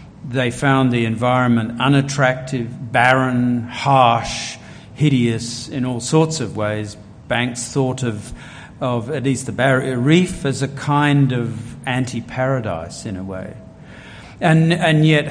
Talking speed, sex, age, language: 130 wpm, male, 50-69, English